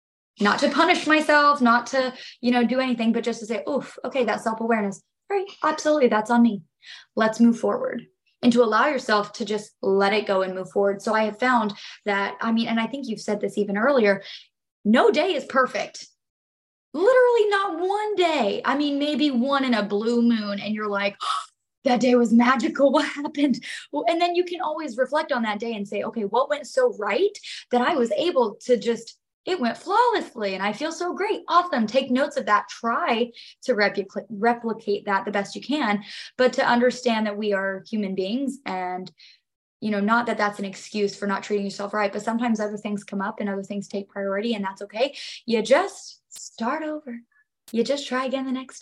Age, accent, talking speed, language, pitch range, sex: 20-39, American, 205 wpm, English, 205-270 Hz, female